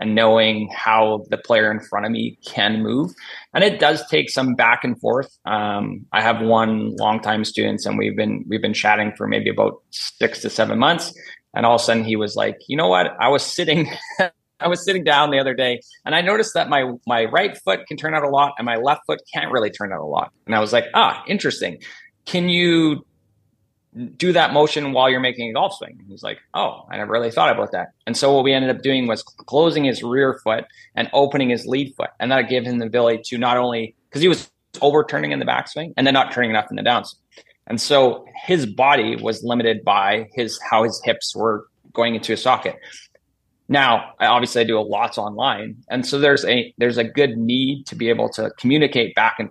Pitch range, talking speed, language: 110-140 Hz, 230 wpm, English